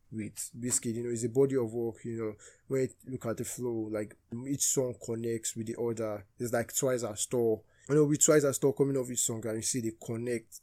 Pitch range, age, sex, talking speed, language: 110-130 Hz, 20-39, male, 250 wpm, English